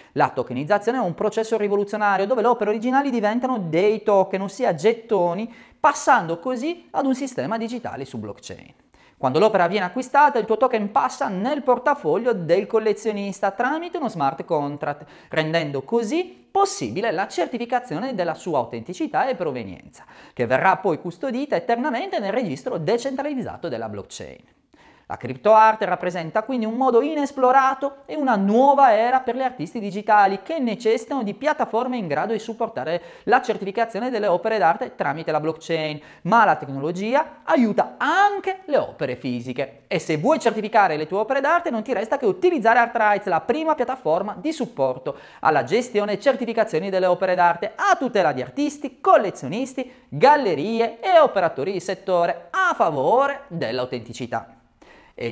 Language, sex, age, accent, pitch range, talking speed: Italian, male, 30-49, native, 180-260 Hz, 150 wpm